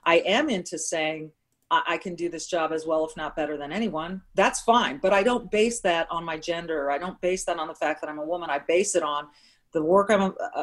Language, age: English, 40-59